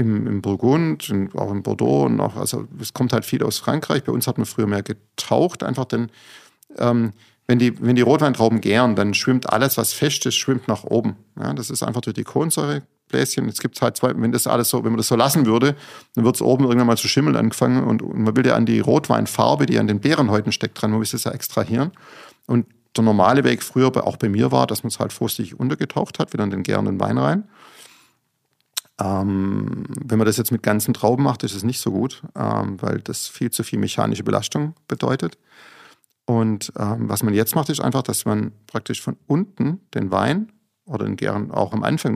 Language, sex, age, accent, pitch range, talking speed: German, male, 50-69, German, 110-130 Hz, 215 wpm